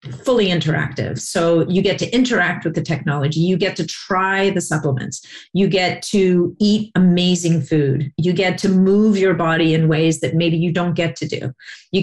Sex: female